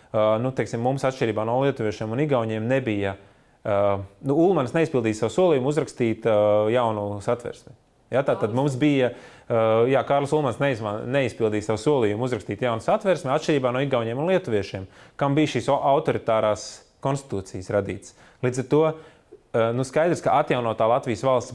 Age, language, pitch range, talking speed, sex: 20-39, English, 110-135 Hz, 140 wpm, male